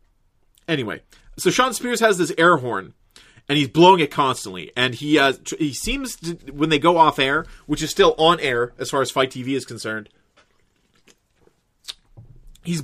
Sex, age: male, 30-49